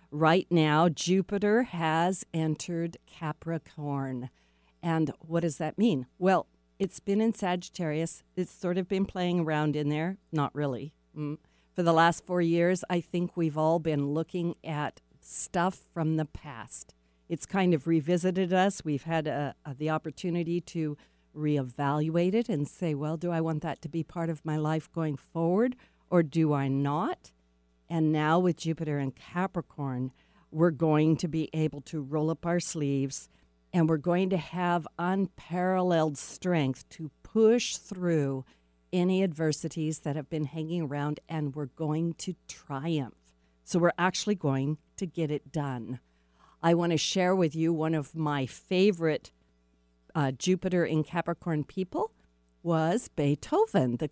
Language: English